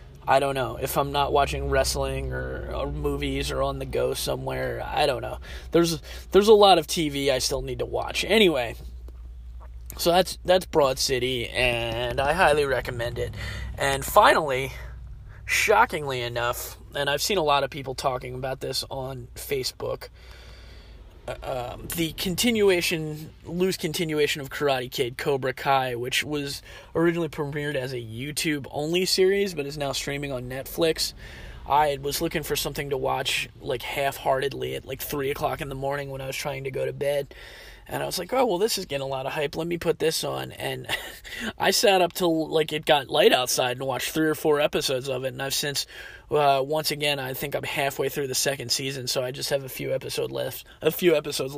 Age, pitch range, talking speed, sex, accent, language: 30-49, 130-150 Hz, 195 wpm, male, American, English